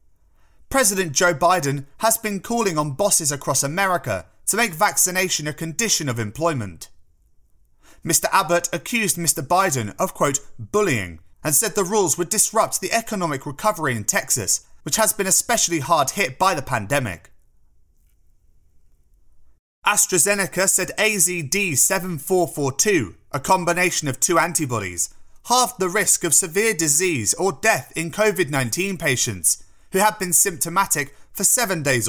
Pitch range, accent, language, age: 130-195 Hz, British, English, 30-49